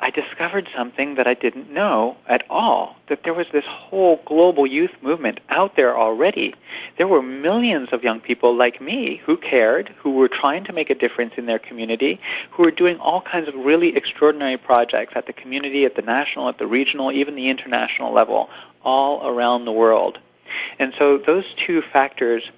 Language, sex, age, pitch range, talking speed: English, male, 40-59, 115-140 Hz, 190 wpm